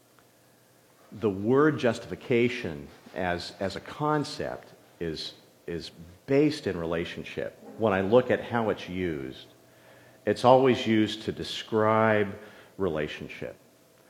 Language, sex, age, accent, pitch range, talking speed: English, male, 50-69, American, 95-125 Hz, 105 wpm